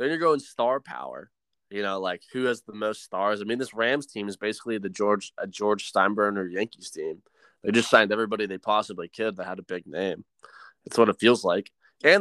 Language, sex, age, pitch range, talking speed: English, male, 20-39, 105-155 Hz, 210 wpm